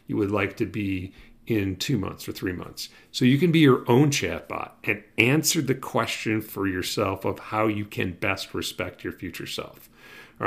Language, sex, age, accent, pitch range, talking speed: English, male, 40-59, American, 95-125 Hz, 195 wpm